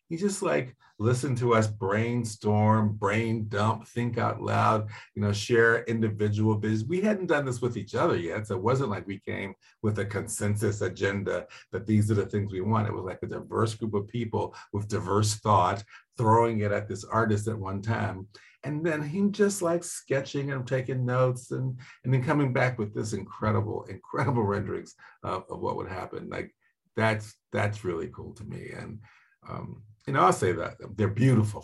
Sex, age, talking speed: male, 50-69, 190 wpm